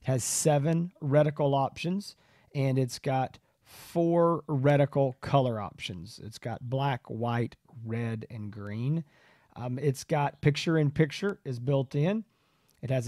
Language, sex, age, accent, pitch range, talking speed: English, male, 40-59, American, 115-150 Hz, 135 wpm